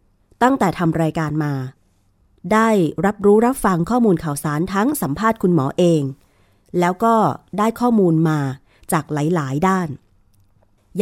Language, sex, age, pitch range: Thai, female, 30-49, 140-225 Hz